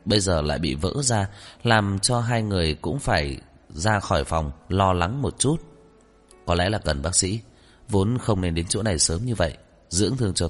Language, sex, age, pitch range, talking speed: Vietnamese, male, 20-39, 85-115 Hz, 210 wpm